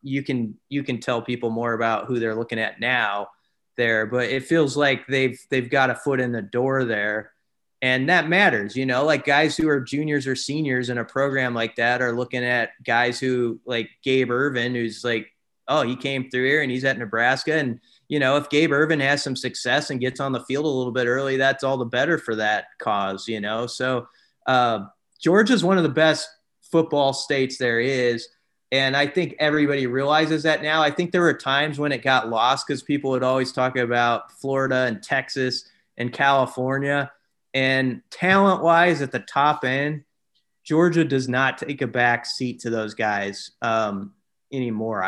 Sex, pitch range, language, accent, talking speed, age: male, 120-145 Hz, English, American, 195 wpm, 30-49